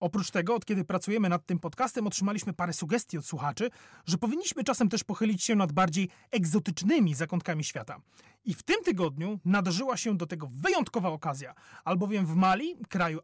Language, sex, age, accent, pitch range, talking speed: Polish, male, 30-49, native, 175-220 Hz, 170 wpm